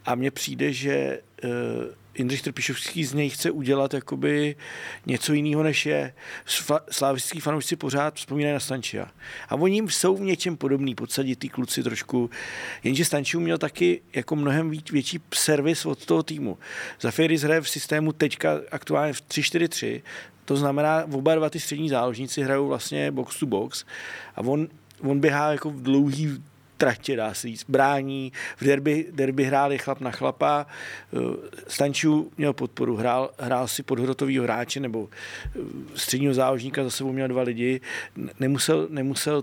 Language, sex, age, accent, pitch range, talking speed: Czech, male, 40-59, native, 130-150 Hz, 155 wpm